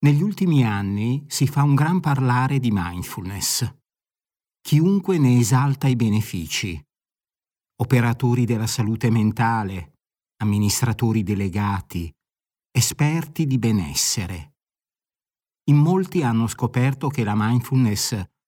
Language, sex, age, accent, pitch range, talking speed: Italian, male, 50-69, native, 105-135 Hz, 100 wpm